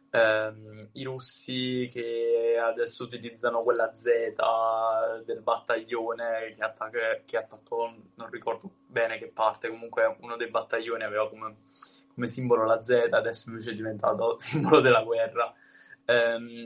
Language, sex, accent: Italian, male, native